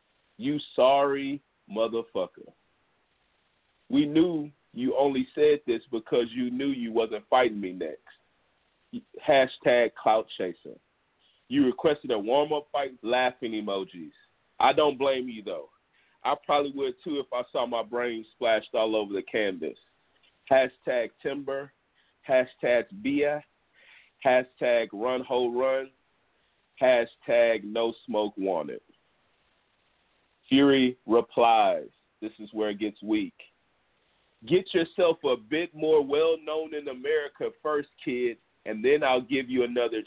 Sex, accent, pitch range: male, American, 115-155 Hz